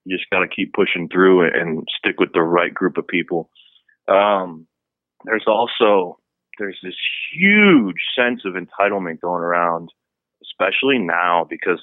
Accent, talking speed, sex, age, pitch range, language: American, 140 wpm, male, 30-49, 85-105 Hz, English